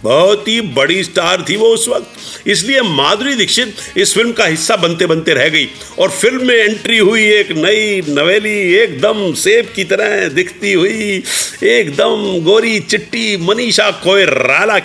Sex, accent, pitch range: male, native, 180-260 Hz